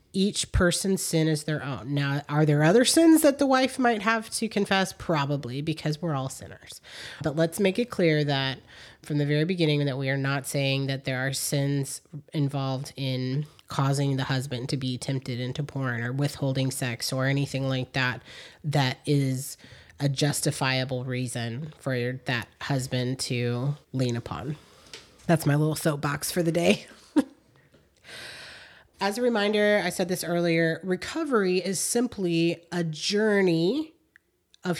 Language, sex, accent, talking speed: English, female, American, 155 wpm